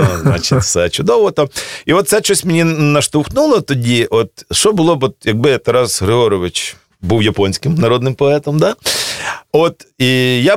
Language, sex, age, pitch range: Russian, male, 40-59, 100-145 Hz